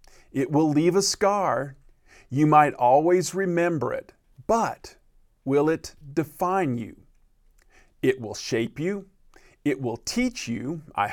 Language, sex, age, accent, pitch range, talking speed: English, male, 50-69, American, 130-180 Hz, 130 wpm